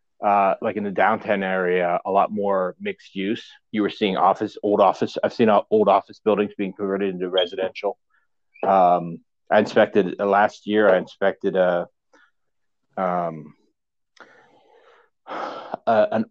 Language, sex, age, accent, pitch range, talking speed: English, male, 30-49, American, 100-125 Hz, 130 wpm